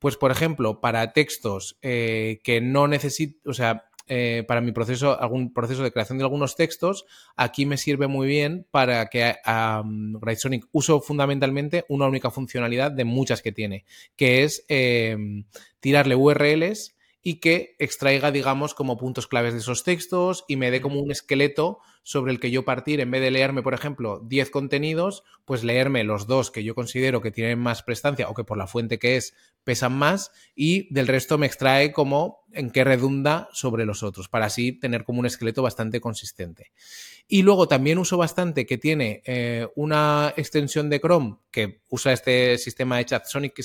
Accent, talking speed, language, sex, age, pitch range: Spanish, 185 wpm, English, male, 20-39, 120-145 Hz